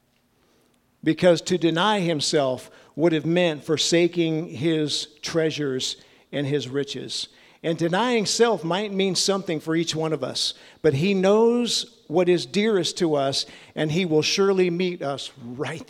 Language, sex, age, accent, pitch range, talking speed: English, male, 50-69, American, 150-200 Hz, 145 wpm